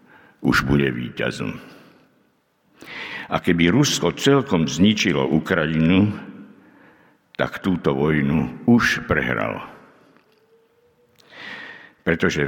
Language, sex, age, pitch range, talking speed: Slovak, male, 60-79, 70-90 Hz, 70 wpm